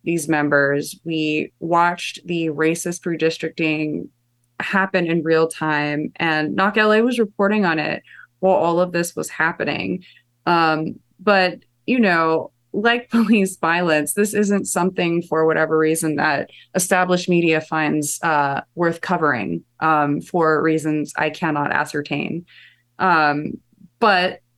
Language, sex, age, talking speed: English, female, 20-39, 125 wpm